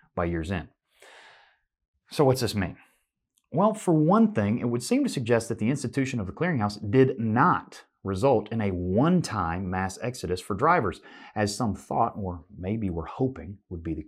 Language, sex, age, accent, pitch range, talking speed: English, male, 30-49, American, 95-130 Hz, 180 wpm